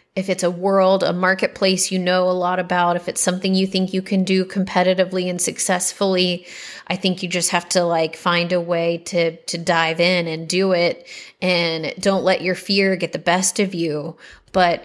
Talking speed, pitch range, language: 200 wpm, 175-195 Hz, English